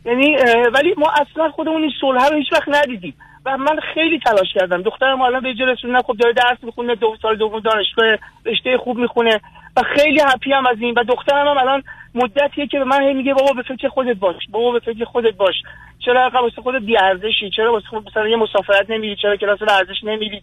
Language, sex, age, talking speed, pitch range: Persian, male, 40-59, 215 wpm, 225-275 Hz